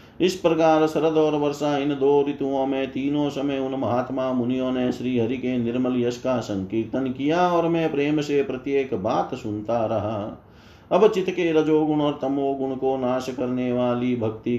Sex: male